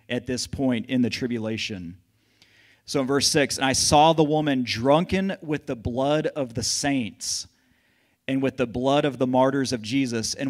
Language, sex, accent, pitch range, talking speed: English, male, American, 105-135 Hz, 185 wpm